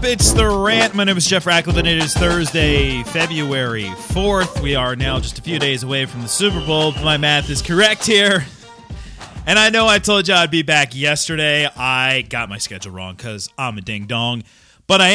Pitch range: 115-170 Hz